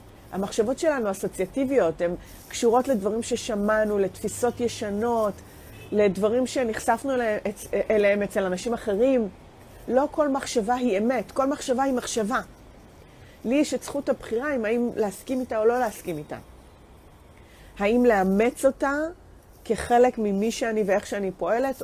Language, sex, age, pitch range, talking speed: English, female, 30-49, 185-250 Hz, 125 wpm